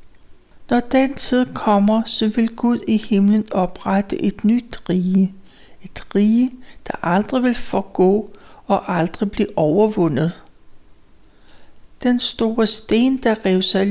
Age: 60-79